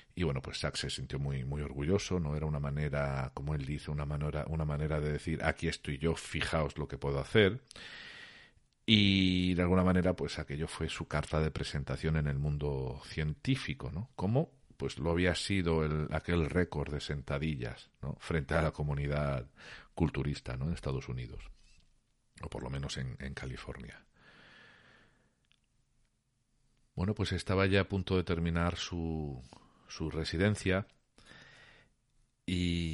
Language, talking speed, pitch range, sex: Spanish, 155 wpm, 75-100 Hz, male